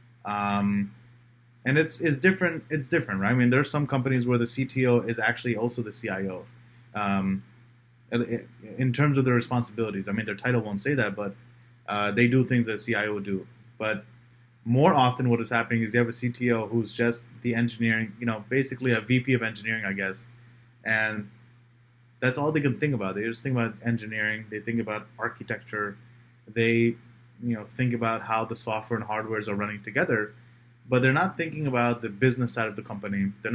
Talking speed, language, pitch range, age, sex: 200 wpm, English, 115-125 Hz, 20-39, male